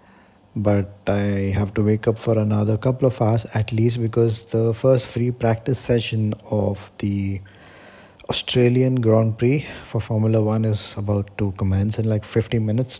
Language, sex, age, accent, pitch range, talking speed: English, male, 20-39, Indian, 100-115 Hz, 160 wpm